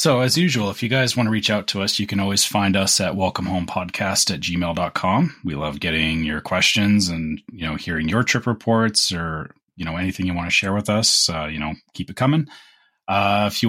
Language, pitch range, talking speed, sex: English, 90-110 Hz, 230 wpm, male